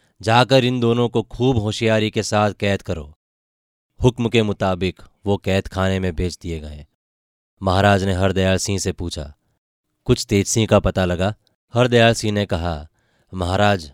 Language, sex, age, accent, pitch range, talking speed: Hindi, male, 20-39, native, 90-110 Hz, 160 wpm